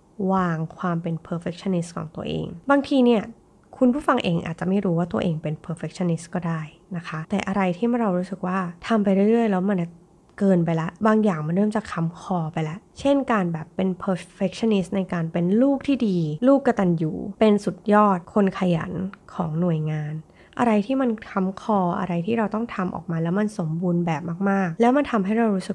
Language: Thai